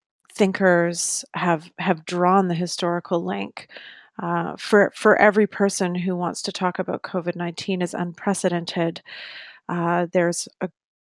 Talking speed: 125 wpm